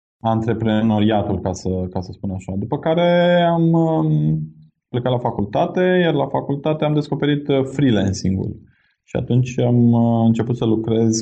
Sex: male